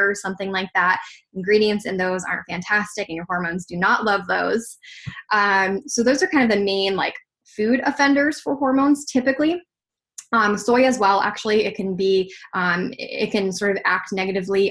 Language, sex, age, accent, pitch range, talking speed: English, female, 10-29, American, 185-230 Hz, 185 wpm